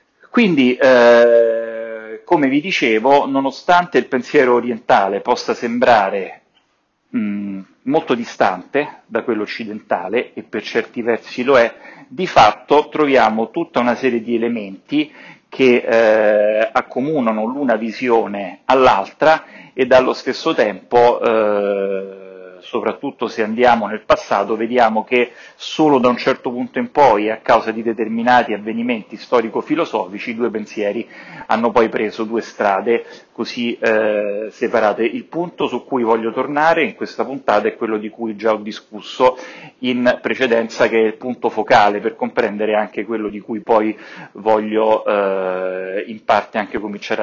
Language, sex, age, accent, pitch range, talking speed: Italian, male, 40-59, native, 110-125 Hz, 140 wpm